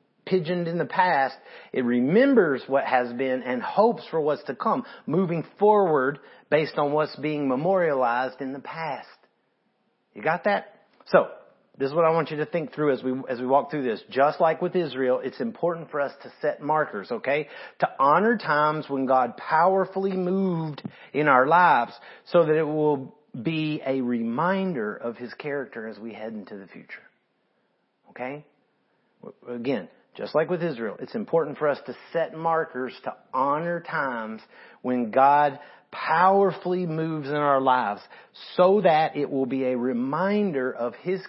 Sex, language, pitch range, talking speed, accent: male, English, 135-170 Hz, 165 wpm, American